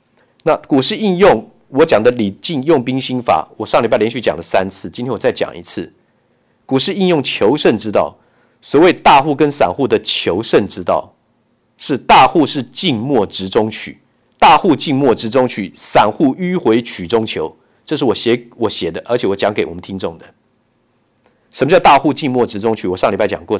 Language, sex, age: Chinese, male, 50-69